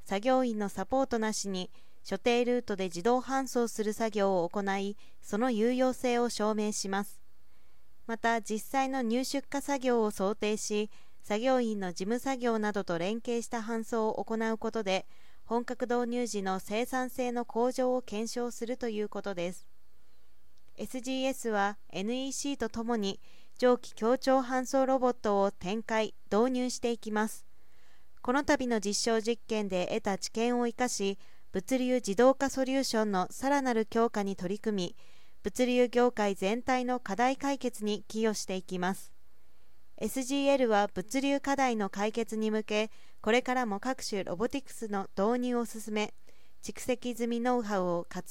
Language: Japanese